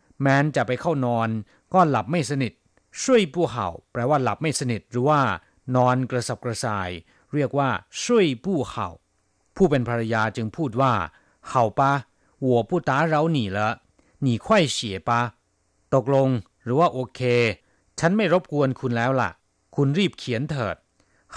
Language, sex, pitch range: Thai, male, 105-140 Hz